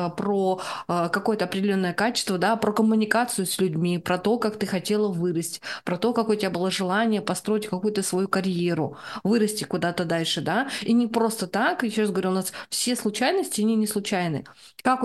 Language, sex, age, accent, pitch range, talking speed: Russian, female, 20-39, native, 190-225 Hz, 180 wpm